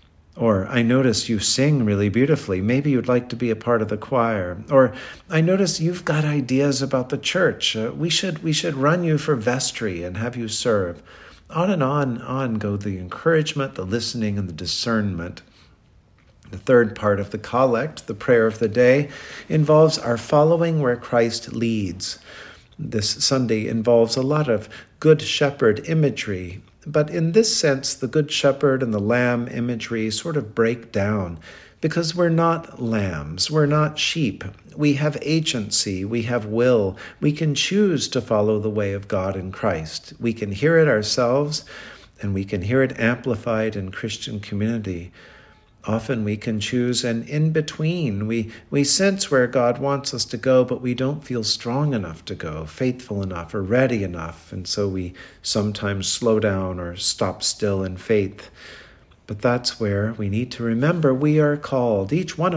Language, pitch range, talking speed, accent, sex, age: English, 105-140 Hz, 175 wpm, American, male, 50-69